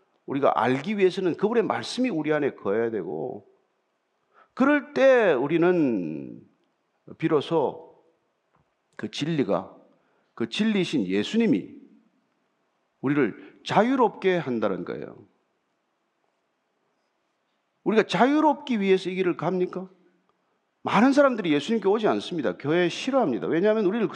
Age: 40-59